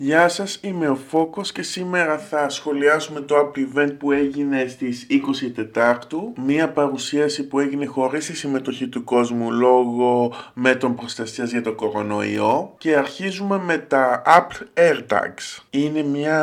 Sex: male